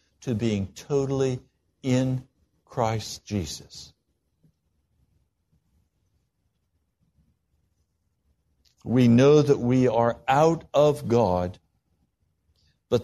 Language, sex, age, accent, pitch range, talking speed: English, male, 60-79, American, 80-130 Hz, 70 wpm